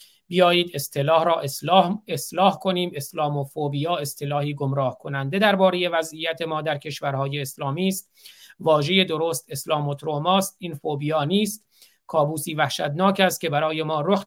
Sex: male